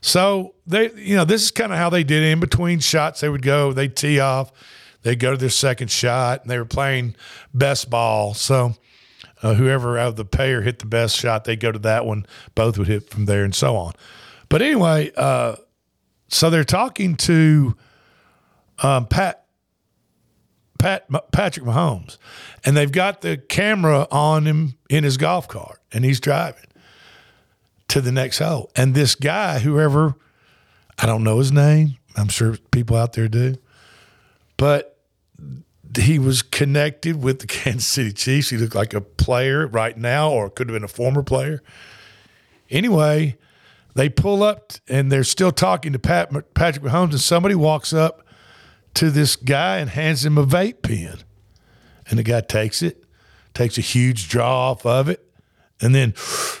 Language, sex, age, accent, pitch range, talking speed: English, male, 50-69, American, 115-150 Hz, 170 wpm